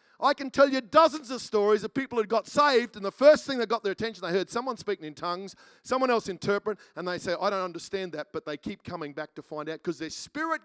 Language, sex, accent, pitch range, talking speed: English, male, Australian, 190-235 Hz, 265 wpm